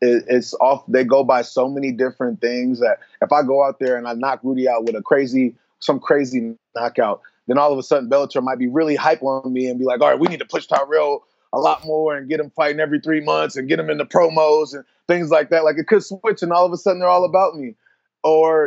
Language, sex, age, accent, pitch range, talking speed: English, male, 20-39, American, 135-170 Hz, 265 wpm